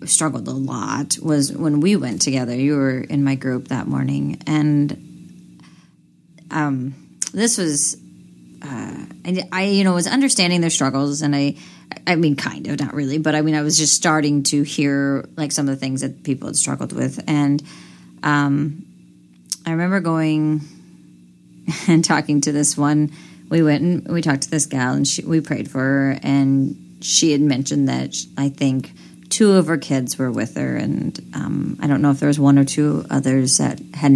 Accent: American